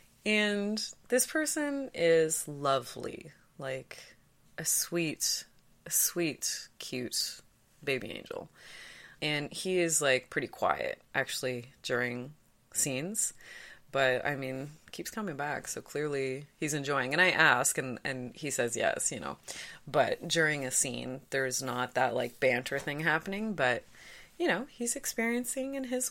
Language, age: English, 20-39